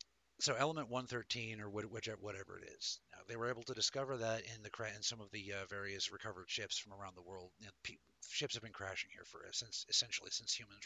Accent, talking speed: American, 240 wpm